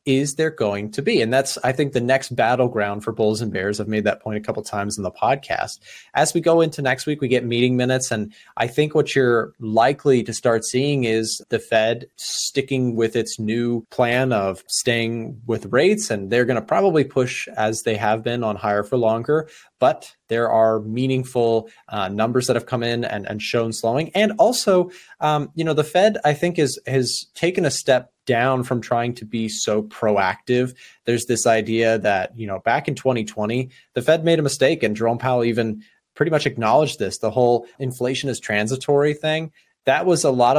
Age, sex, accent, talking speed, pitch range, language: 20-39, male, American, 205 wpm, 115-140 Hz, English